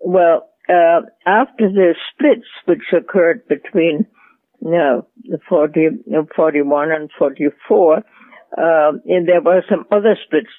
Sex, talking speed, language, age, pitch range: female, 120 wpm, English, 60-79, 155-190 Hz